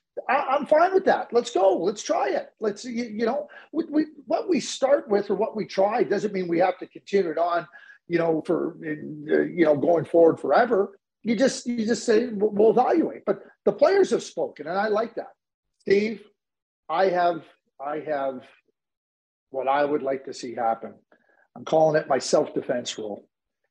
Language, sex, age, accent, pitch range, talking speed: English, male, 50-69, American, 160-220 Hz, 185 wpm